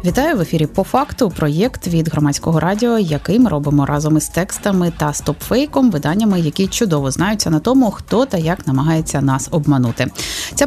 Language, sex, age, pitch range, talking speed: Ukrainian, female, 20-39, 170-235 Hz, 170 wpm